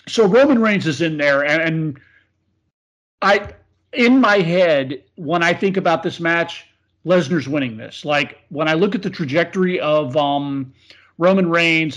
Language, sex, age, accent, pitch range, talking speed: English, male, 40-59, American, 150-185 Hz, 160 wpm